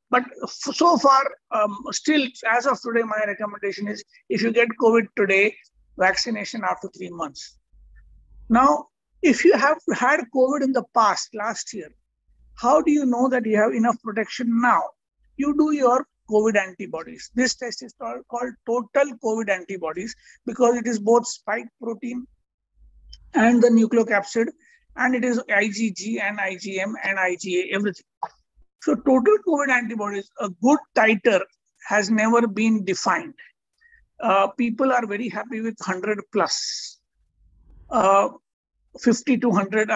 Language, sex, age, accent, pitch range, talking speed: English, male, 60-79, Indian, 205-255 Hz, 140 wpm